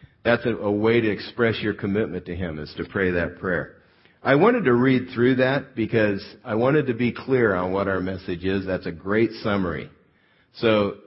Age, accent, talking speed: 50-69, American, 195 wpm